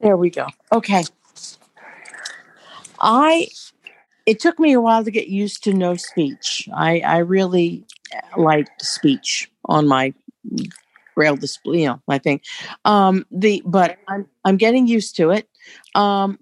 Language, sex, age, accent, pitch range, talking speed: English, female, 50-69, American, 175-215 Hz, 145 wpm